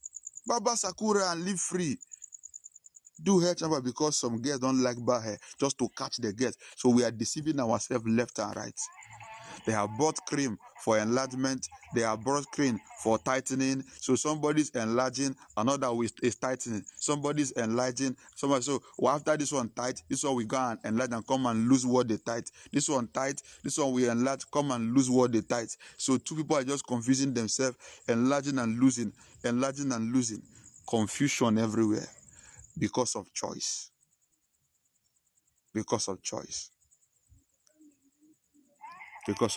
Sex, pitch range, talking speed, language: male, 115-150 Hz, 155 wpm, English